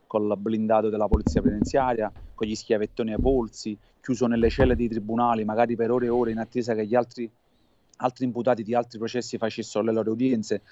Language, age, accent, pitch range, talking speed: Italian, 30-49, native, 115-135 Hz, 195 wpm